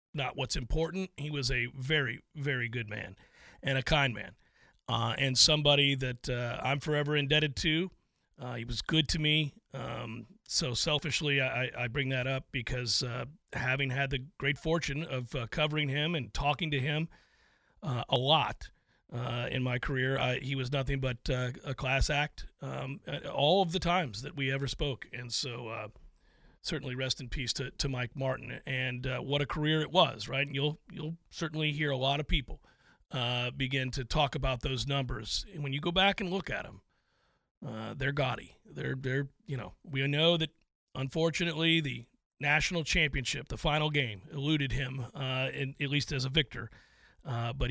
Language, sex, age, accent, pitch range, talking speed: English, male, 40-59, American, 125-150 Hz, 185 wpm